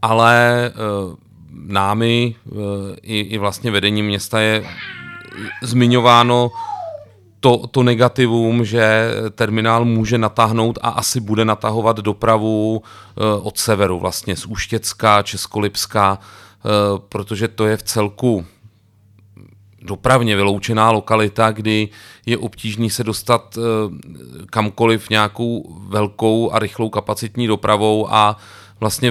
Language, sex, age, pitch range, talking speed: Czech, male, 30-49, 105-115 Hz, 100 wpm